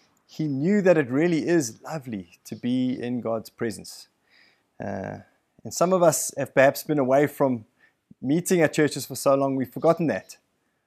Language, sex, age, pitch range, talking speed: English, male, 20-39, 125-155 Hz, 170 wpm